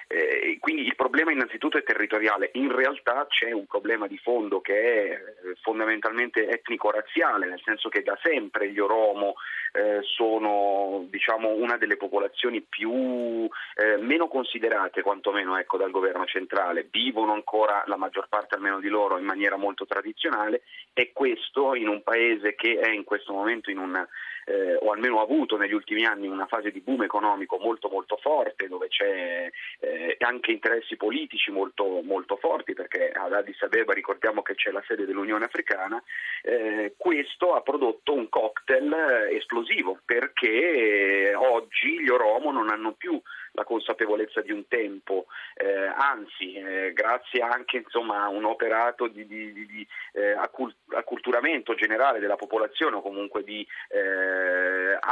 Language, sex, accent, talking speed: Italian, male, native, 150 wpm